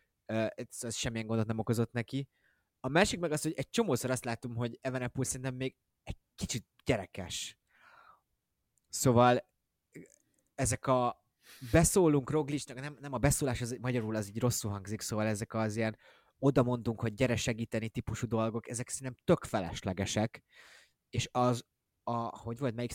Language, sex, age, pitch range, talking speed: Hungarian, male, 20-39, 105-125 Hz, 155 wpm